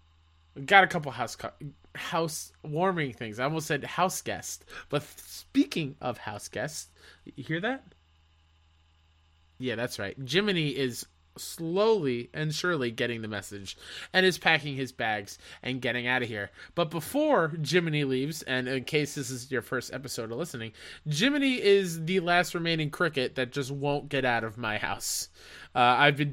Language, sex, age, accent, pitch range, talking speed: English, male, 20-39, American, 120-170 Hz, 165 wpm